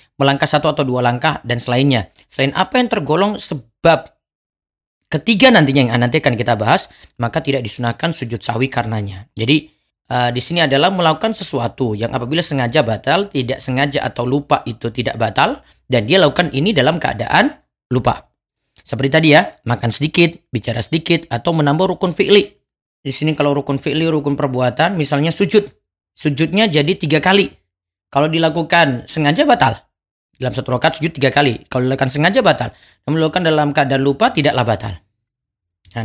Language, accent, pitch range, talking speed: Indonesian, native, 125-170 Hz, 160 wpm